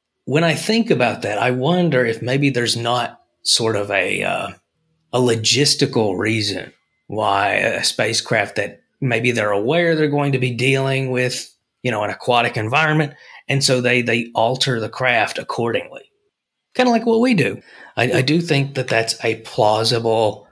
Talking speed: 170 wpm